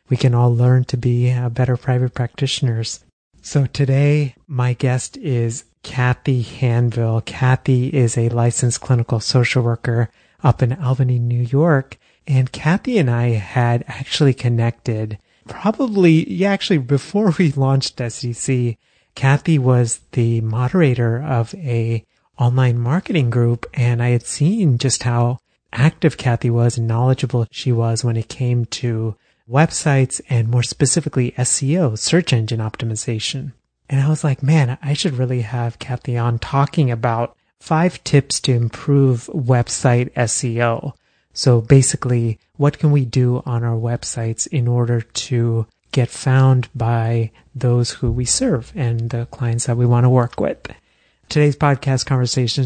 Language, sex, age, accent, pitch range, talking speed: English, male, 30-49, American, 120-135 Hz, 145 wpm